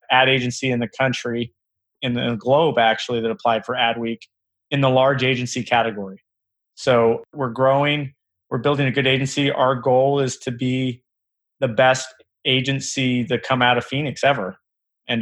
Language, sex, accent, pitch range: English, male, American, 115-130 Hz